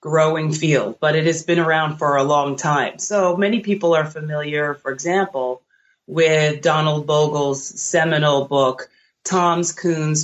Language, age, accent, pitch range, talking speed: English, 30-49, American, 140-170 Hz, 145 wpm